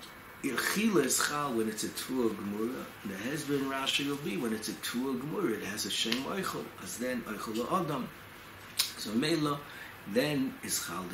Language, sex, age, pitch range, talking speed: English, male, 60-79, 110-125 Hz, 145 wpm